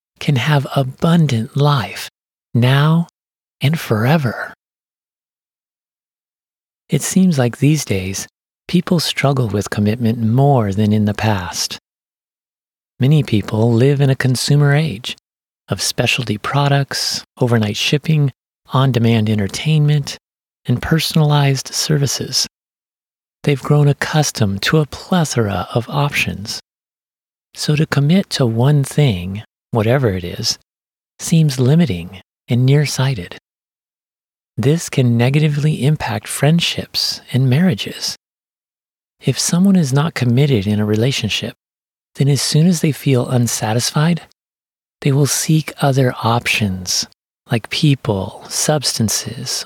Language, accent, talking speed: English, American, 110 wpm